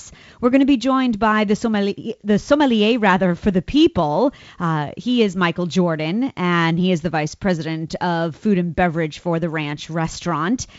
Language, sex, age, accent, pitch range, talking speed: English, female, 30-49, American, 170-220 Hz, 170 wpm